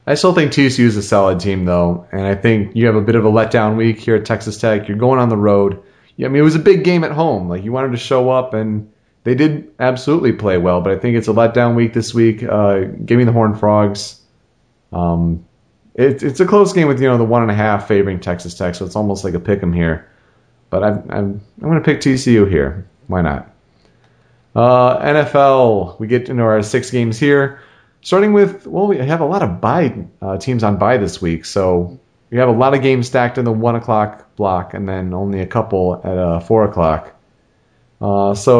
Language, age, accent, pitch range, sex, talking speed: English, 30-49, American, 100-130 Hz, male, 230 wpm